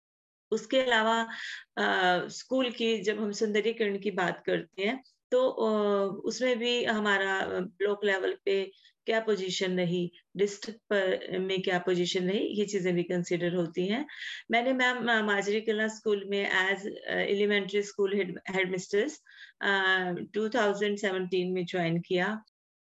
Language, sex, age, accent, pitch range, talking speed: Hindi, female, 30-49, native, 190-225 Hz, 125 wpm